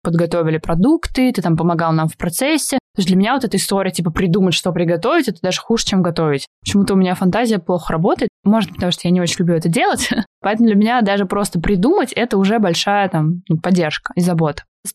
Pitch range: 170-220 Hz